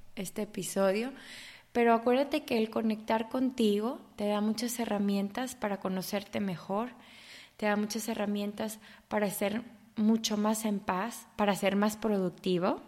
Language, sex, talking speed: English, female, 135 wpm